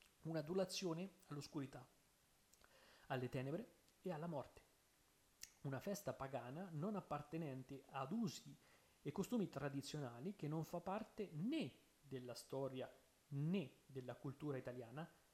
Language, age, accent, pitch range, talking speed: Italian, 30-49, native, 130-160 Hz, 110 wpm